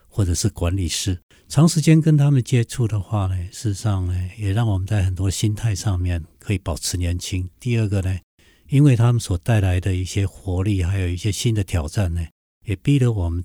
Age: 60-79